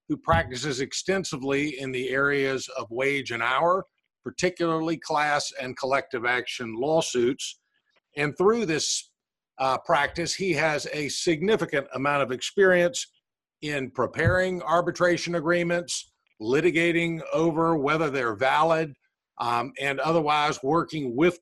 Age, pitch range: 50-69, 140-175 Hz